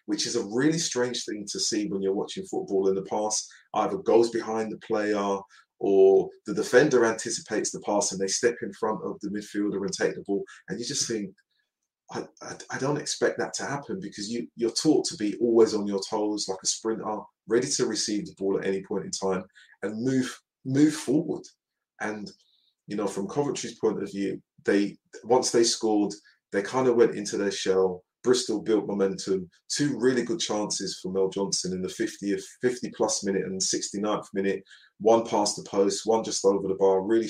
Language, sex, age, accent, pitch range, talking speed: English, male, 30-49, British, 95-115 Hz, 200 wpm